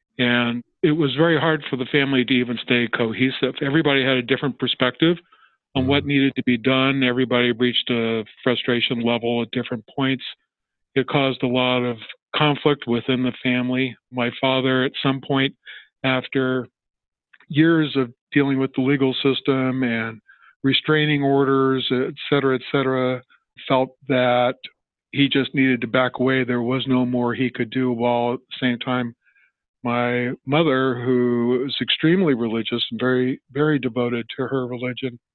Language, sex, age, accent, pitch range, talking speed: English, male, 50-69, American, 125-135 Hz, 160 wpm